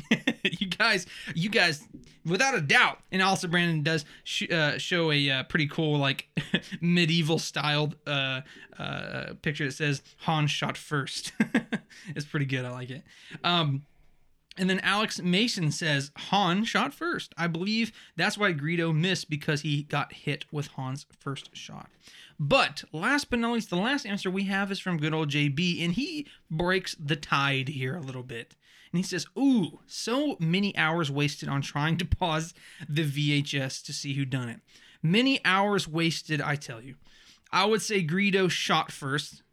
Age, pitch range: 20-39, 145-190 Hz